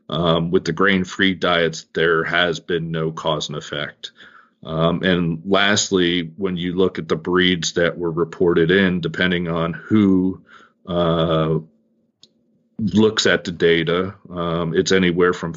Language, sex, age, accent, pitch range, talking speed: English, male, 40-59, American, 85-95 Hz, 145 wpm